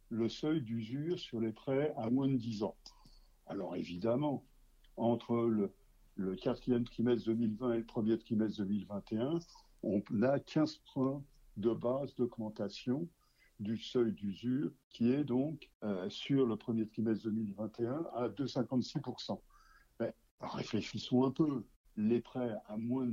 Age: 60-79